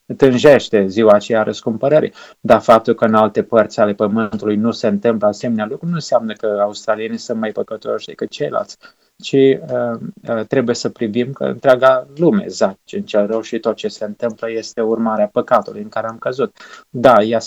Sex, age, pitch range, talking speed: male, 20-39, 105-130 Hz, 175 wpm